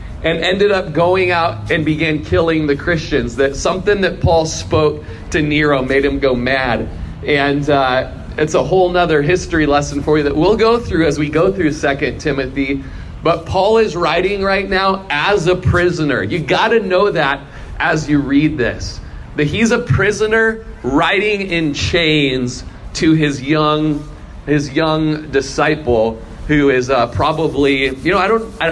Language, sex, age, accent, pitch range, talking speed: English, male, 40-59, American, 135-185 Hz, 170 wpm